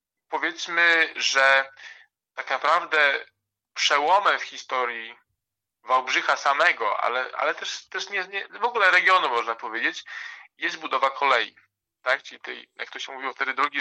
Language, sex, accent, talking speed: Polish, male, native, 140 wpm